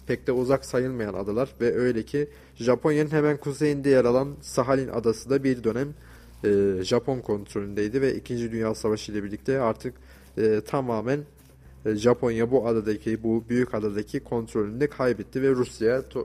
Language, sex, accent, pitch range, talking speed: Turkish, male, native, 105-125 Hz, 135 wpm